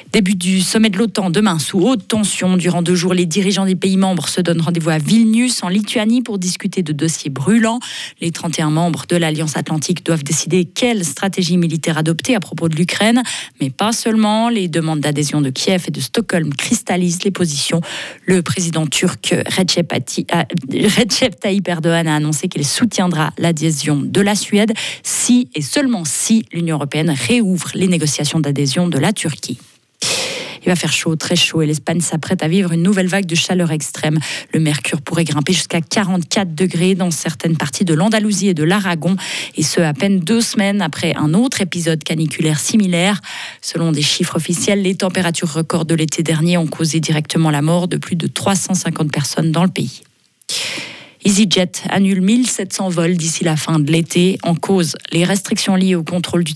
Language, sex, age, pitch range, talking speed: French, female, 30-49, 160-195 Hz, 180 wpm